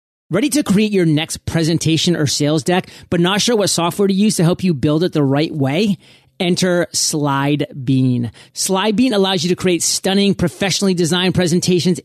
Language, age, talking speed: English, 30-49, 175 wpm